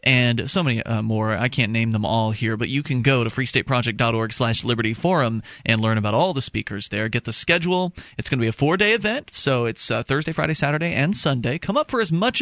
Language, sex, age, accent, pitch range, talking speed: English, male, 30-49, American, 120-175 Hz, 245 wpm